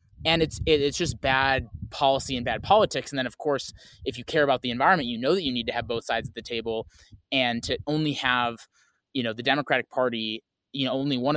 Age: 20-39